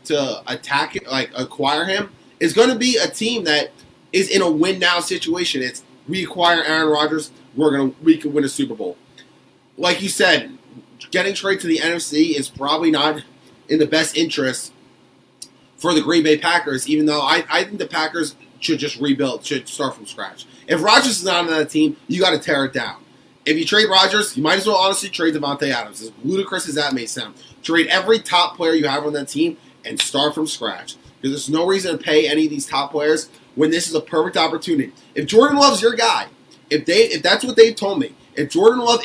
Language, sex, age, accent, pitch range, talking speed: English, male, 20-39, American, 150-215 Hz, 220 wpm